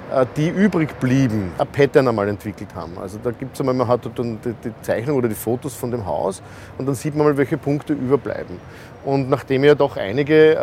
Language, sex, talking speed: German, male, 210 wpm